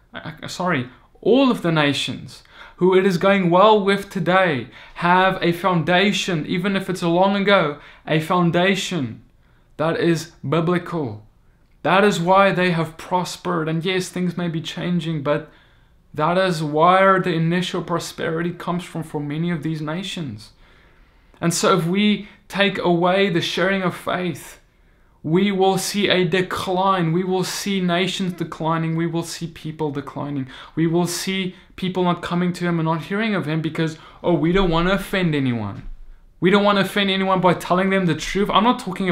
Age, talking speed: 20-39, 170 wpm